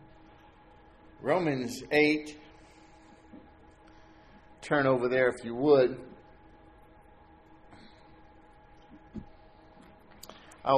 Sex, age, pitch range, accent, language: male, 50-69, 125-150 Hz, American, English